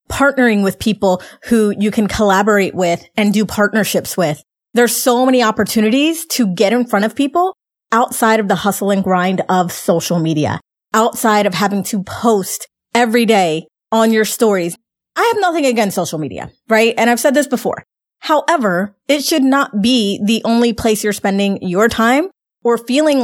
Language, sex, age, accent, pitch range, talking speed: English, female, 30-49, American, 200-245 Hz, 175 wpm